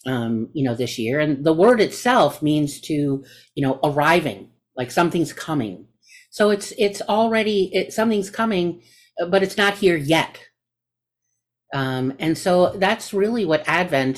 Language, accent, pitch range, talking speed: English, American, 125-195 Hz, 150 wpm